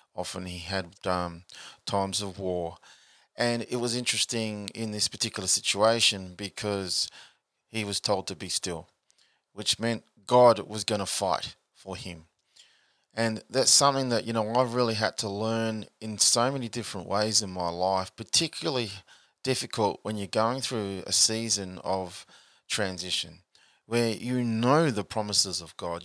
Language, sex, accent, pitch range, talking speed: English, male, Australian, 95-110 Hz, 155 wpm